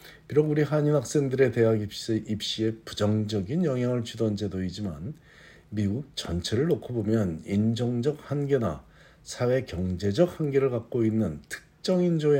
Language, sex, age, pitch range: Korean, male, 50-69, 95-130 Hz